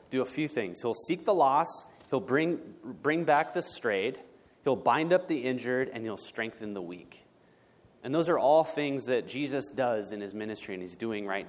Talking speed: 205 wpm